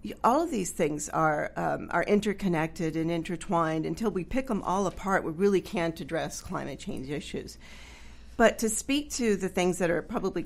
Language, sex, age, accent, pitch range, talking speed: English, female, 50-69, American, 165-205 Hz, 185 wpm